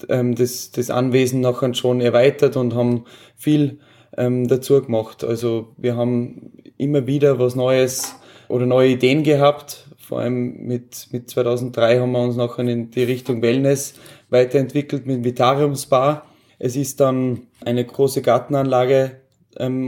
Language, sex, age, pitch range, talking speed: German, male, 20-39, 125-140 Hz, 140 wpm